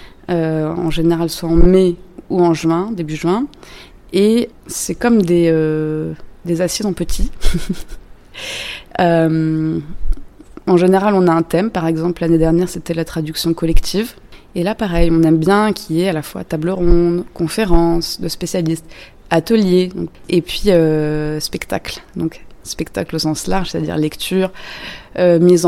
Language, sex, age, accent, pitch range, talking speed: French, female, 20-39, French, 160-185 Hz, 155 wpm